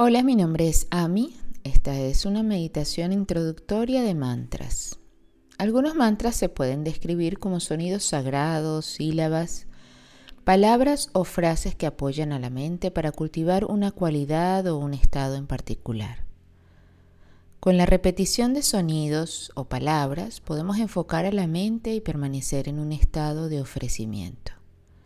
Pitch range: 130-195 Hz